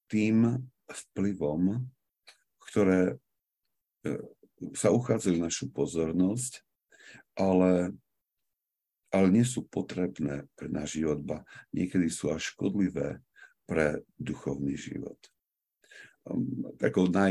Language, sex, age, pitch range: Slovak, male, 50-69, 75-95 Hz